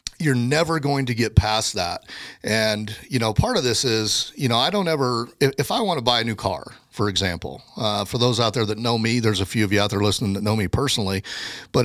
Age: 40-59